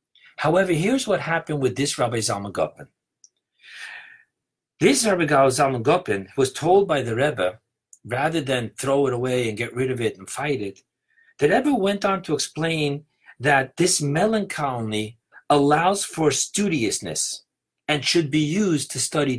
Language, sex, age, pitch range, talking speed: English, male, 50-69, 130-175 Hz, 150 wpm